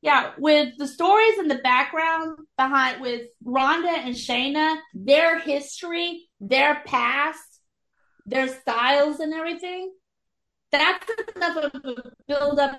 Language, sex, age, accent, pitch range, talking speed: English, female, 30-49, American, 220-285 Hz, 120 wpm